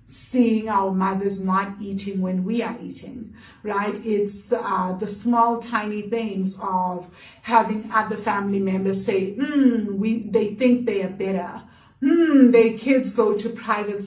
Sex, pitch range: female, 200-235 Hz